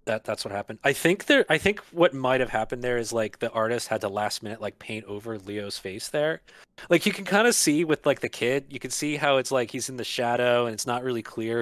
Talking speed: 275 wpm